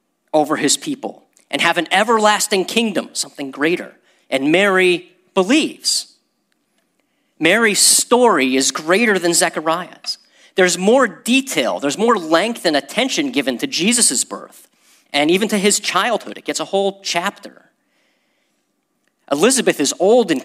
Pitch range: 175-275 Hz